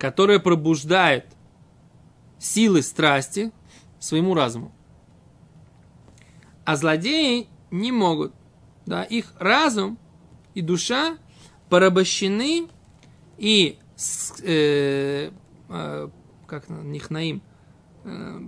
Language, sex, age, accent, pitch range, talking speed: Russian, male, 20-39, native, 160-210 Hz, 70 wpm